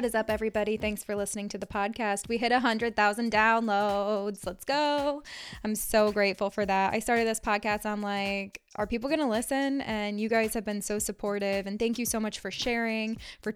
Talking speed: 210 wpm